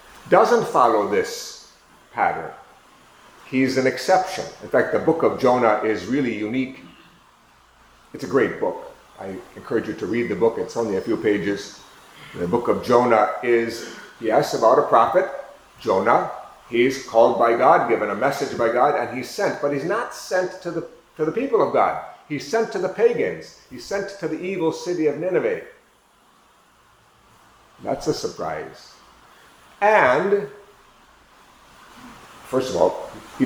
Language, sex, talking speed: English, male, 150 wpm